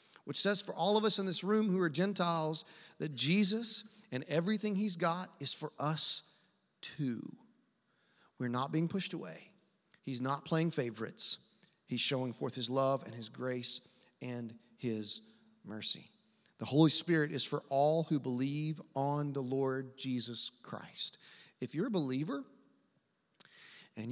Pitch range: 130-180 Hz